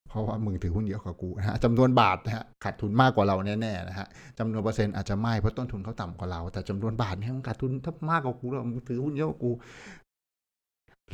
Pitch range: 100-130 Hz